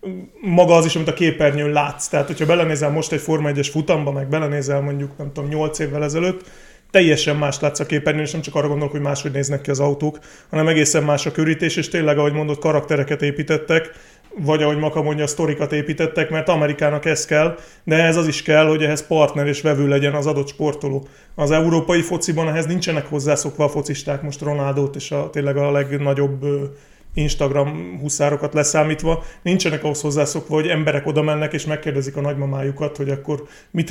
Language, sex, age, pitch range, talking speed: Hungarian, male, 30-49, 145-160 Hz, 190 wpm